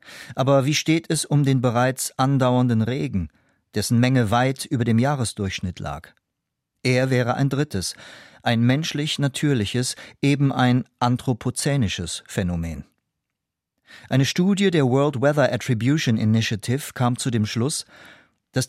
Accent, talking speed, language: German, 120 wpm, German